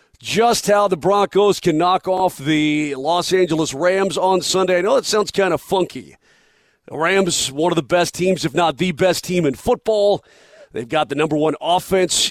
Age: 40-59